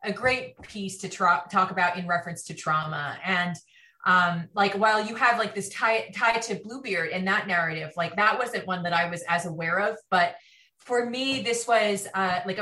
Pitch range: 175-220 Hz